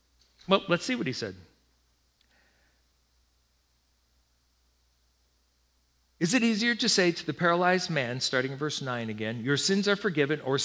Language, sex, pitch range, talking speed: English, male, 110-180 Hz, 140 wpm